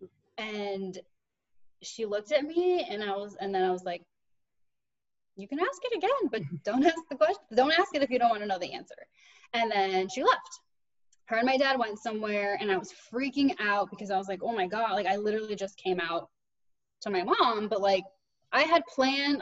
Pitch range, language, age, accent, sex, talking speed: 195-255 Hz, English, 10-29, American, female, 215 wpm